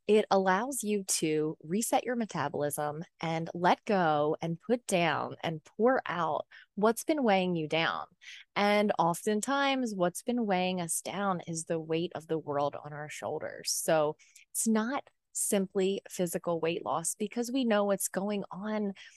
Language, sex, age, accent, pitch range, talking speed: English, female, 20-39, American, 165-210 Hz, 155 wpm